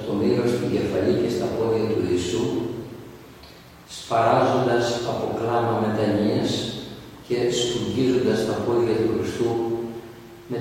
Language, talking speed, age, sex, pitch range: Greek, 105 wpm, 50-69, male, 110-125 Hz